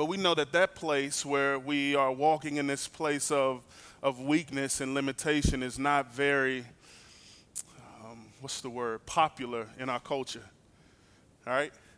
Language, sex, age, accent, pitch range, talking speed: English, male, 20-39, American, 150-195 Hz, 155 wpm